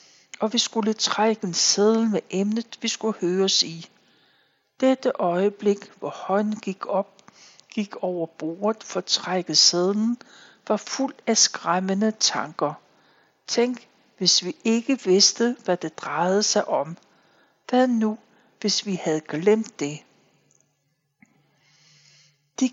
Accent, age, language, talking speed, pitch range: native, 60-79, Danish, 125 wpm, 180-225 Hz